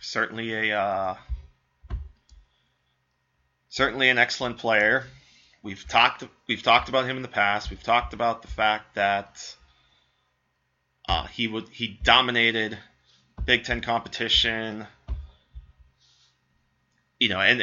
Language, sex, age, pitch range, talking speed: English, male, 20-39, 95-120 Hz, 110 wpm